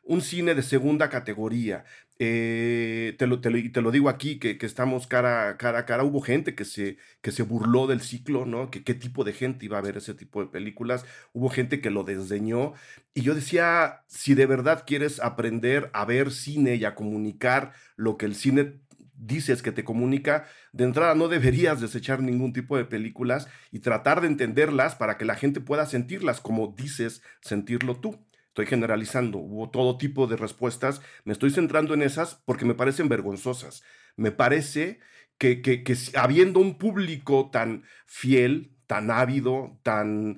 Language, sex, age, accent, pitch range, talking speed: Spanish, male, 40-59, Mexican, 115-140 Hz, 185 wpm